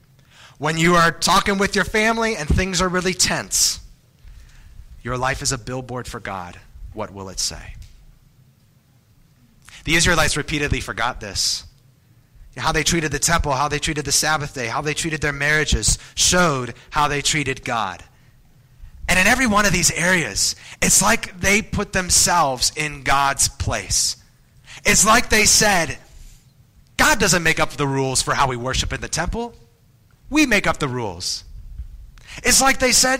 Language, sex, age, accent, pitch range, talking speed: English, male, 30-49, American, 120-175 Hz, 165 wpm